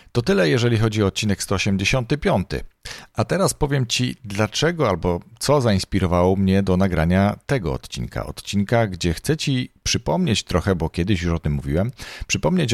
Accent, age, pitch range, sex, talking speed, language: native, 40-59, 85-120 Hz, male, 155 wpm, Polish